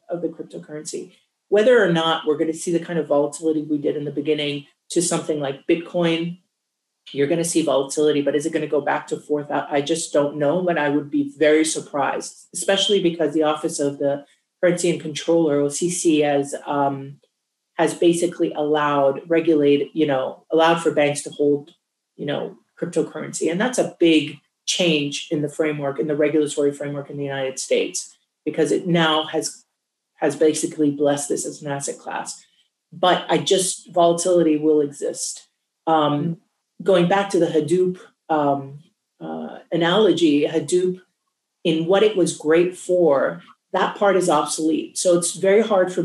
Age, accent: 40-59, American